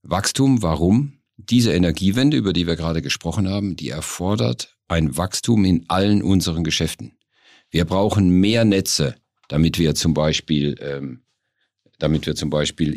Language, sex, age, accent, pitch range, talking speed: German, male, 50-69, German, 80-95 Hz, 125 wpm